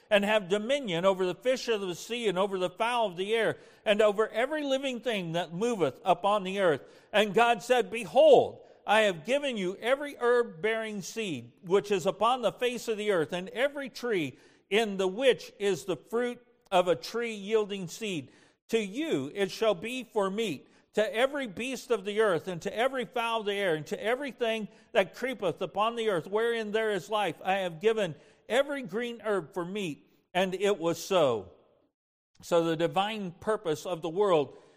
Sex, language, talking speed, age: male, English, 190 wpm, 50-69